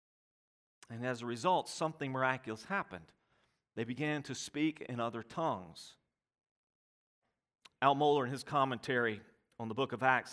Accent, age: American, 40-59